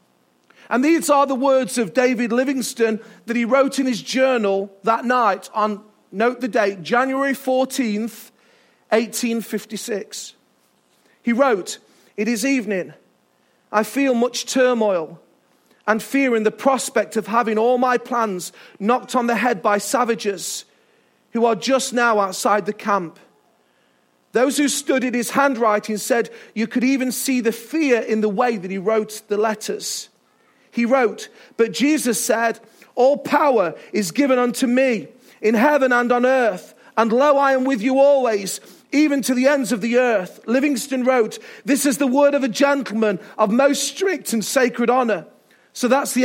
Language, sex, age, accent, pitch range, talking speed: English, male, 40-59, British, 215-265 Hz, 160 wpm